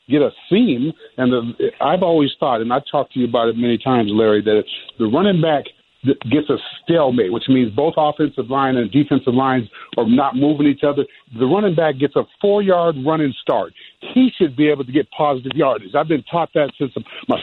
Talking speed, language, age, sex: 205 wpm, English, 60-79, male